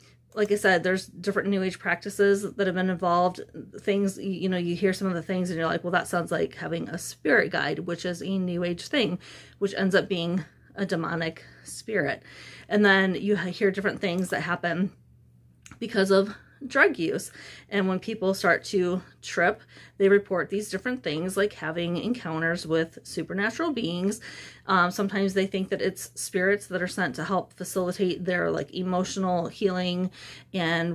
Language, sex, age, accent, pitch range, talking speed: English, female, 30-49, American, 180-210 Hz, 180 wpm